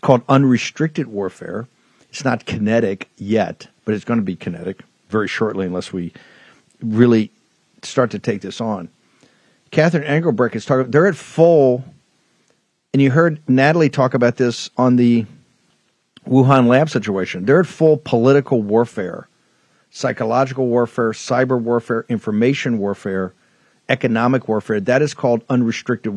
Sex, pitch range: male, 115-140 Hz